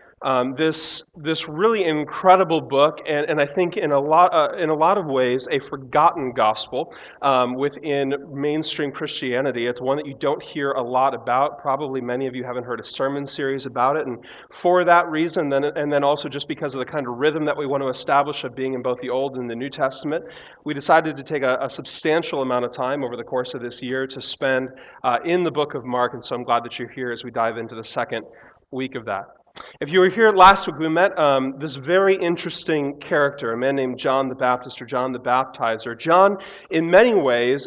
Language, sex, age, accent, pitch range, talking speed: English, male, 30-49, American, 130-160 Hz, 225 wpm